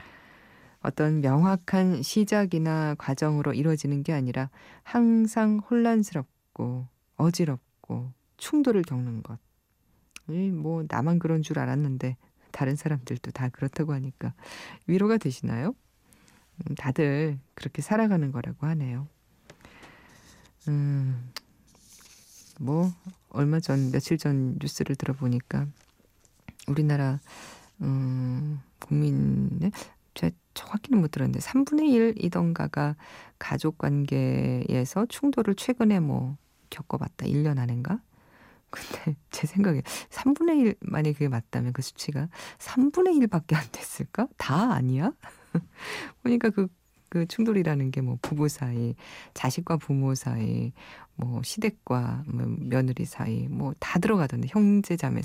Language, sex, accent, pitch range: Korean, female, native, 130-190 Hz